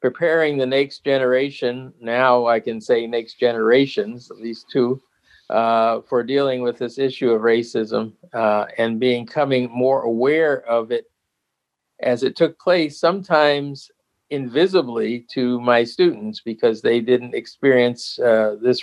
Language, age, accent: English, 50-69, American